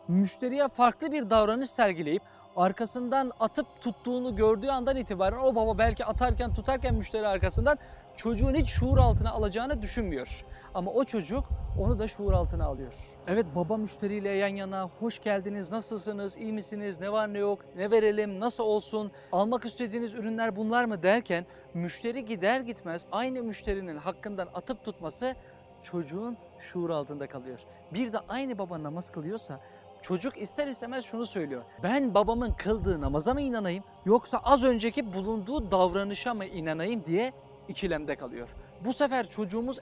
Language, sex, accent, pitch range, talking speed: Turkish, male, native, 190-245 Hz, 150 wpm